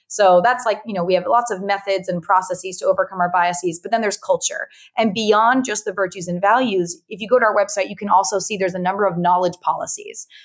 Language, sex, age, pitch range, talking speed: English, female, 30-49, 175-210 Hz, 245 wpm